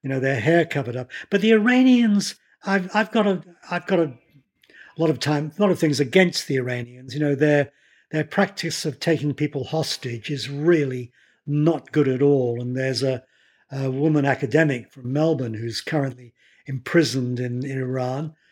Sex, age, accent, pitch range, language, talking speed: male, 50-69, British, 135-170 Hz, English, 180 wpm